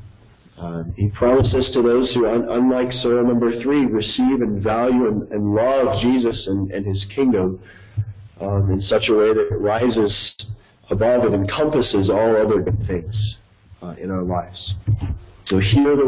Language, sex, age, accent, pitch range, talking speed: English, male, 40-59, American, 100-115 Hz, 155 wpm